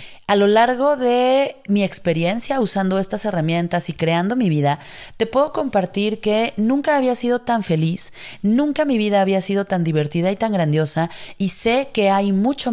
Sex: female